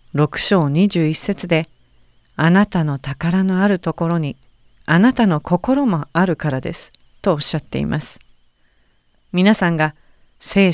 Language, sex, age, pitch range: Japanese, female, 40-59, 140-200 Hz